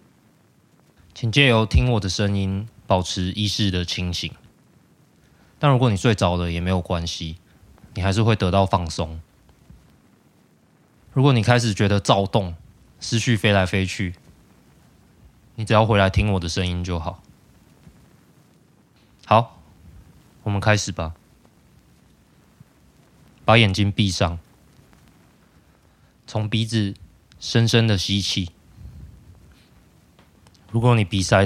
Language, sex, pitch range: Chinese, male, 90-110 Hz